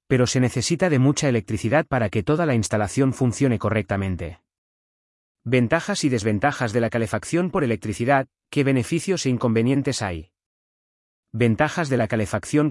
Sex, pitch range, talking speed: male, 95-130 Hz, 140 wpm